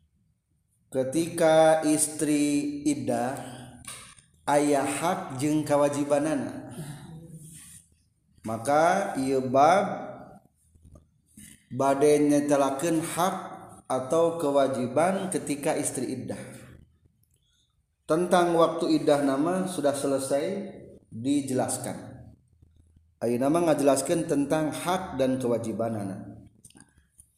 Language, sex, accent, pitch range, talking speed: Indonesian, male, native, 125-155 Hz, 65 wpm